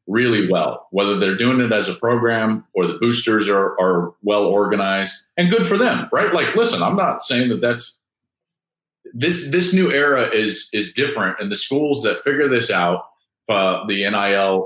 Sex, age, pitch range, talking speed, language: male, 40-59, 95-120 Hz, 185 wpm, English